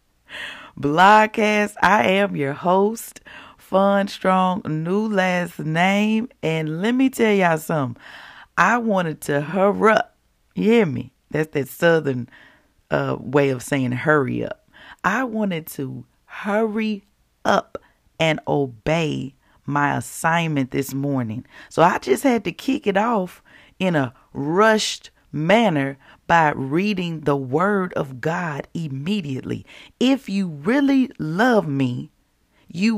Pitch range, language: 145-205 Hz, English